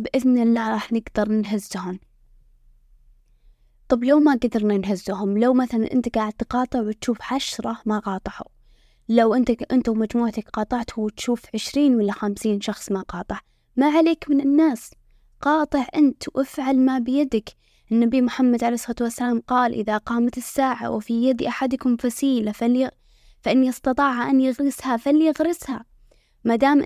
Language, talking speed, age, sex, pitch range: Arabic, 130 wpm, 10-29, female, 220-265 Hz